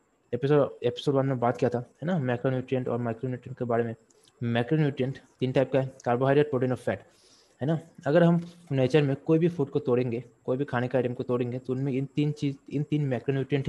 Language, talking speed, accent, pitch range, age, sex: Hindi, 160 wpm, native, 120-145 Hz, 20-39, male